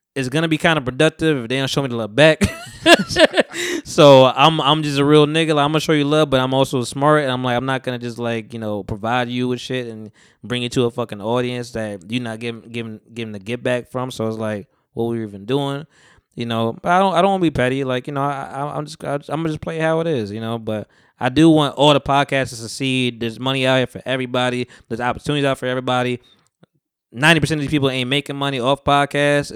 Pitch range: 115-145 Hz